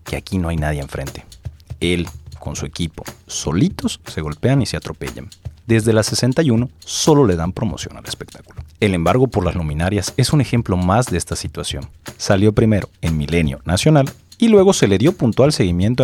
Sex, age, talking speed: male, 40-59, 185 wpm